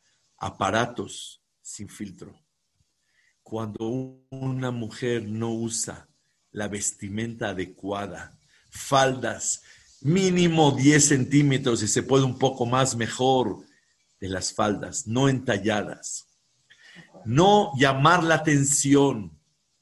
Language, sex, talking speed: English, male, 95 wpm